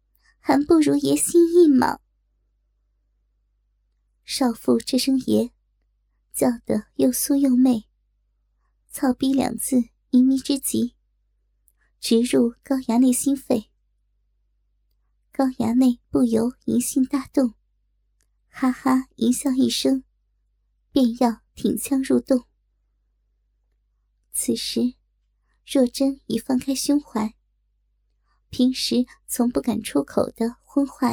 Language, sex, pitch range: Chinese, male, 240-275 Hz